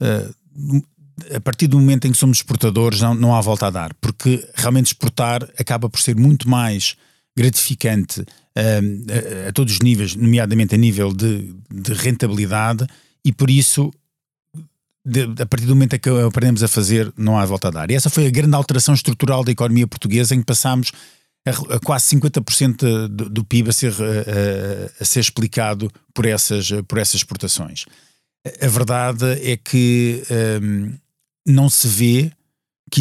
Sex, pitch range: male, 115-135 Hz